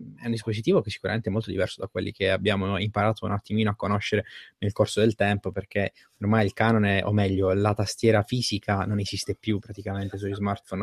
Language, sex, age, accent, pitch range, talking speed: Italian, male, 20-39, native, 105-115 Hz, 200 wpm